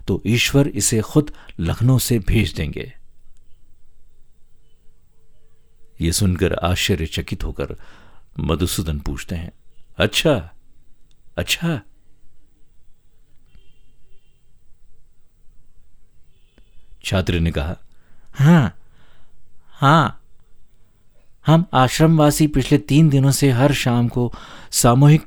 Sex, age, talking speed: male, 50-69, 80 wpm